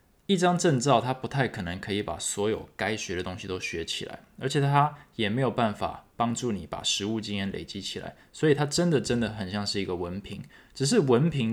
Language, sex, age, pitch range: Chinese, male, 20-39, 100-125 Hz